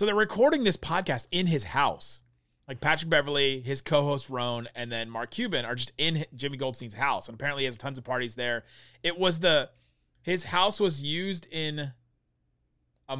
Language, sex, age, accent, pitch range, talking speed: English, male, 30-49, American, 120-165 Hz, 185 wpm